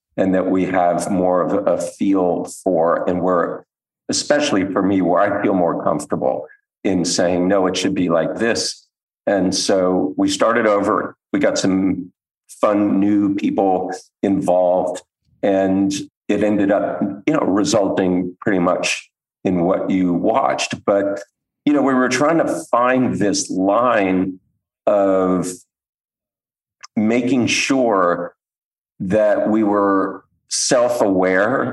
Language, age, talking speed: English, 50-69, 130 wpm